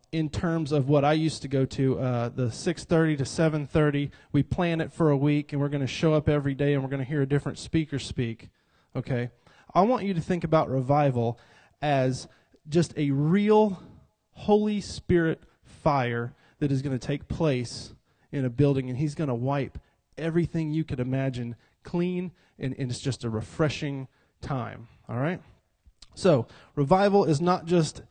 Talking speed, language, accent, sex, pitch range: 180 wpm, English, American, male, 130-160 Hz